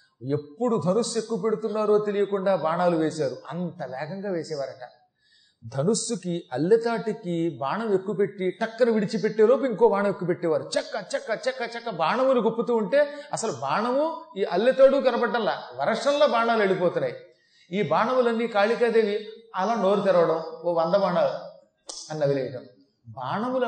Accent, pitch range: native, 160-230 Hz